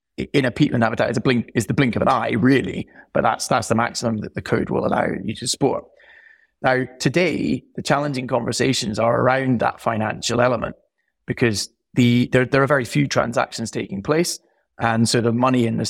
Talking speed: 200 wpm